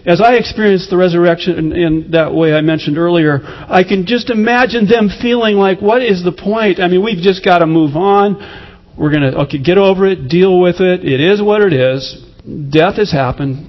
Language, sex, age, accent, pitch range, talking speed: English, male, 40-59, American, 140-185 Hz, 210 wpm